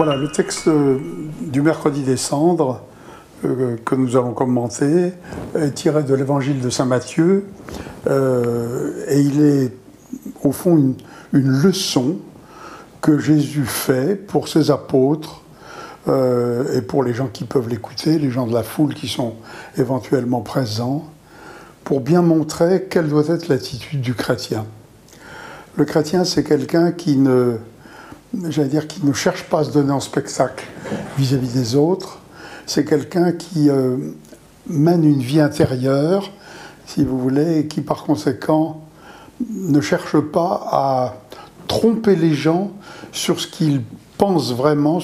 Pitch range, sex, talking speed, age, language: 130-160 Hz, male, 140 wpm, 60-79, French